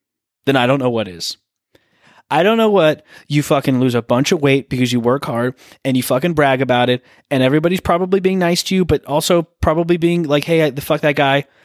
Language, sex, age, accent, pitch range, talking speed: English, male, 20-39, American, 120-155 Hz, 225 wpm